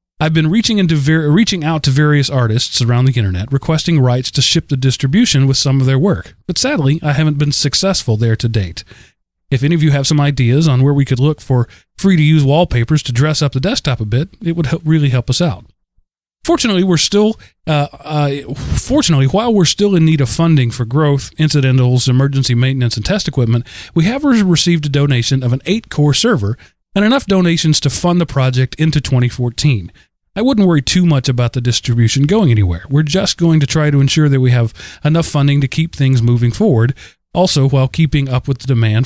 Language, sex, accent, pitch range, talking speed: English, male, American, 125-165 Hz, 200 wpm